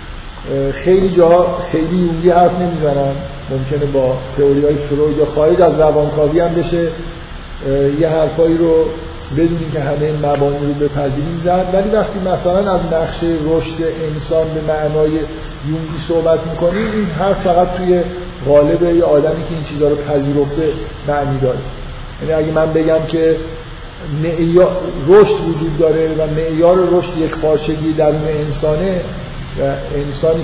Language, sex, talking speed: Persian, male, 135 wpm